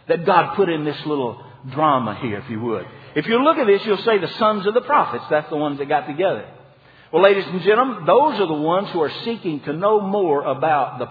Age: 50-69